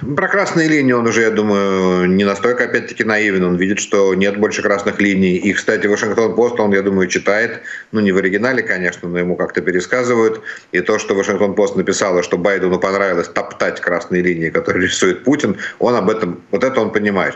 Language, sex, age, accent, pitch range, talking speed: Ukrainian, male, 50-69, native, 95-130 Hz, 190 wpm